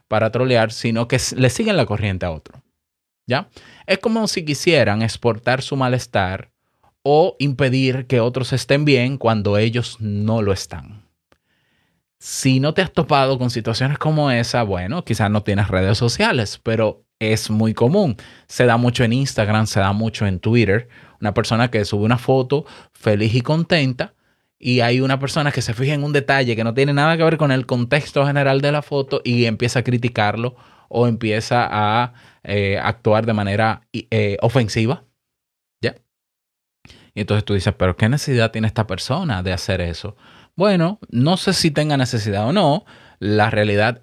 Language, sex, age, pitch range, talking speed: Spanish, male, 20-39, 105-135 Hz, 170 wpm